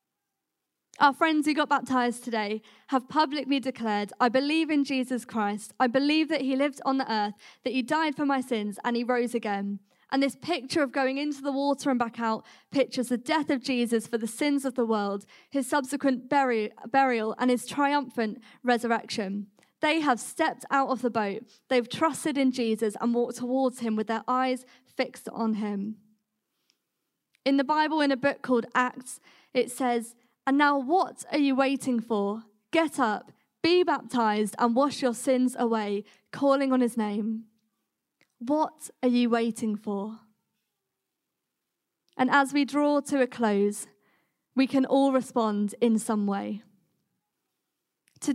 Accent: British